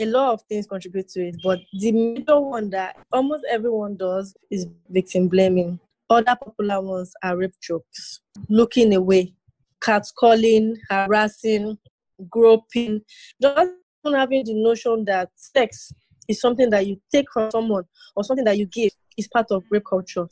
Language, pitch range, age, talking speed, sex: English, 195-240 Hz, 20-39, 155 wpm, female